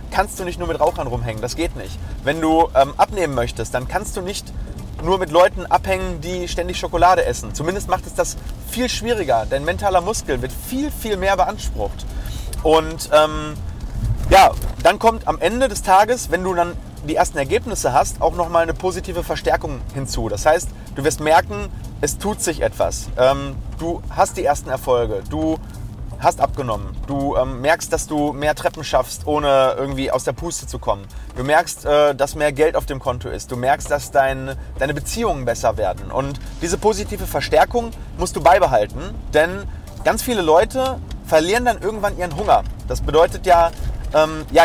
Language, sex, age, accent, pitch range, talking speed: German, male, 30-49, German, 135-190 Hz, 180 wpm